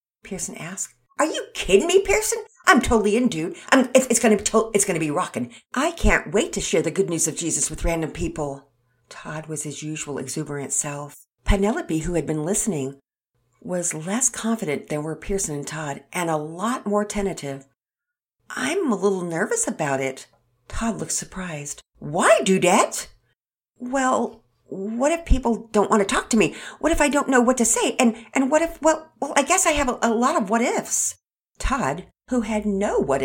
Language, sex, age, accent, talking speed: English, female, 50-69, American, 200 wpm